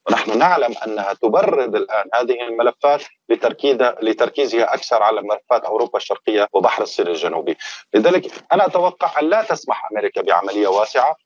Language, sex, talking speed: Arabic, male, 140 wpm